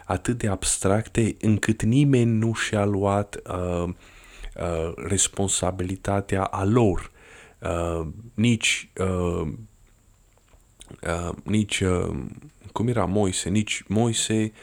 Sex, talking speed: male, 100 wpm